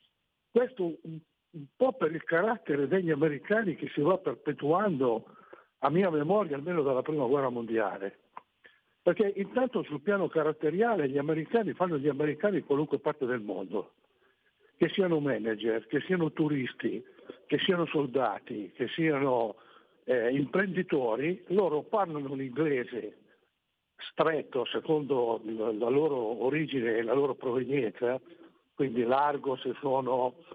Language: Italian